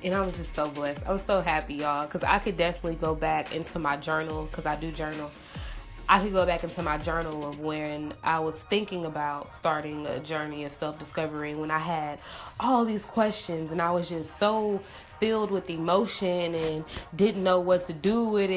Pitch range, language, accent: 155-185 Hz, English, American